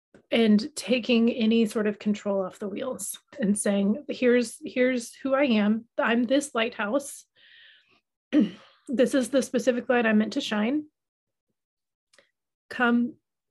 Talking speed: 135 wpm